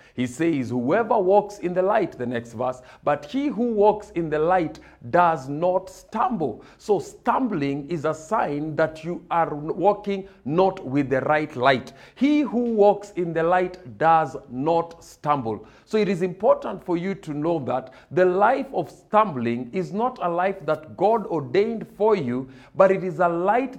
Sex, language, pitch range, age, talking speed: male, English, 140-200 Hz, 50-69, 175 wpm